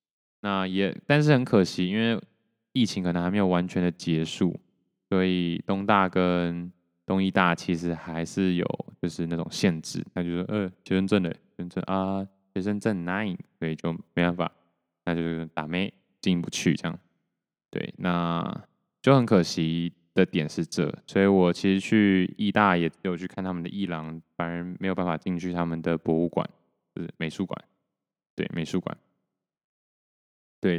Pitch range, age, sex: 85-95 Hz, 20-39, male